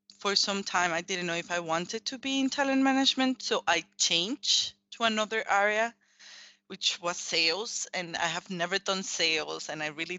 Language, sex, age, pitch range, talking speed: English, female, 20-39, 165-200 Hz, 190 wpm